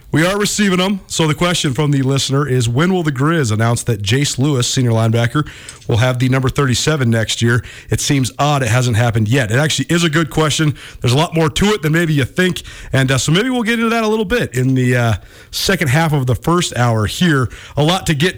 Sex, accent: male, American